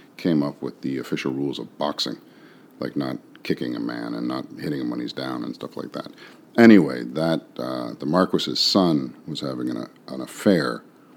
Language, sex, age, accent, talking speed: English, male, 50-69, American, 190 wpm